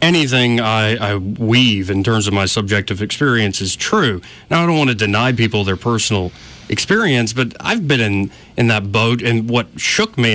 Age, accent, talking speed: 30-49, American, 190 wpm